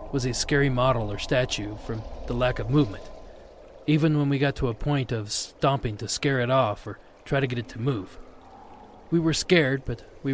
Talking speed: 210 wpm